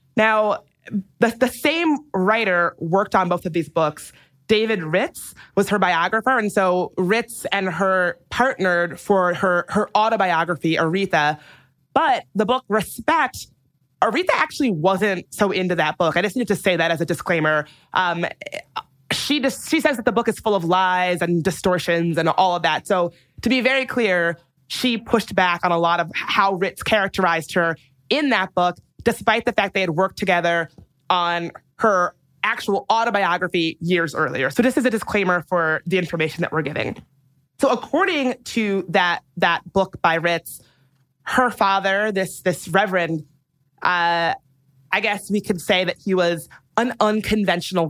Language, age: English, 20-39